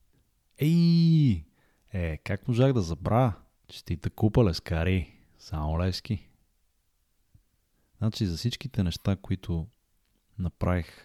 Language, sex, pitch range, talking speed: Bulgarian, male, 85-105 Hz, 105 wpm